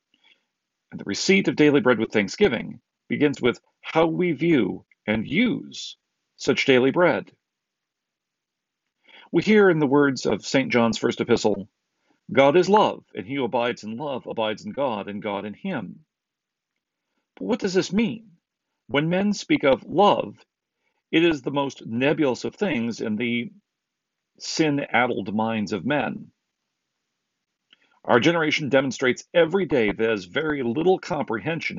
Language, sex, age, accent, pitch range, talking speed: English, male, 40-59, American, 115-180 Hz, 145 wpm